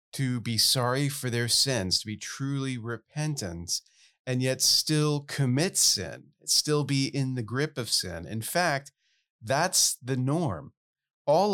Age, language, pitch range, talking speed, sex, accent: 40-59, English, 110-145 Hz, 145 wpm, male, American